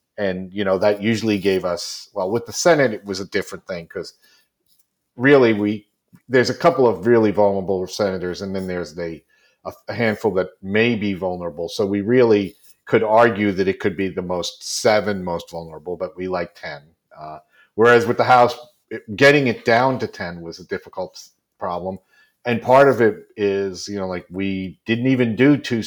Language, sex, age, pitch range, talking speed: English, male, 40-59, 90-120 Hz, 185 wpm